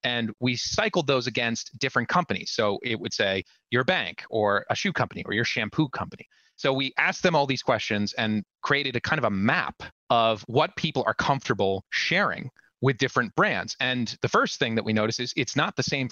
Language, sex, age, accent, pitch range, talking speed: English, male, 30-49, American, 105-135 Hz, 210 wpm